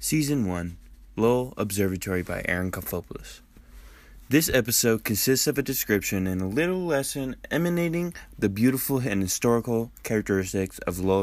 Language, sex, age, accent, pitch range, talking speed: English, male, 20-39, American, 95-130 Hz, 135 wpm